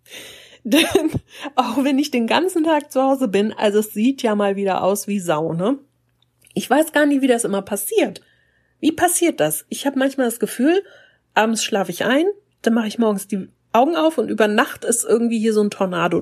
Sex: female